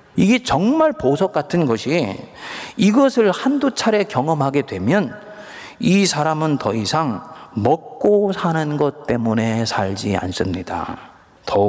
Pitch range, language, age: 115-175 Hz, Korean, 40-59